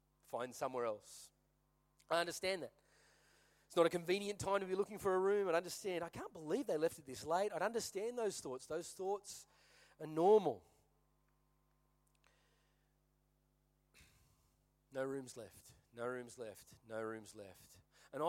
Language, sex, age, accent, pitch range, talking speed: English, male, 30-49, Australian, 125-190 Hz, 150 wpm